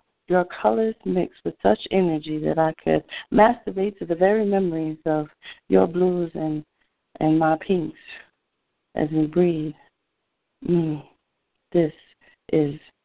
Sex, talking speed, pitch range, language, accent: female, 125 wpm, 155-190 Hz, English, American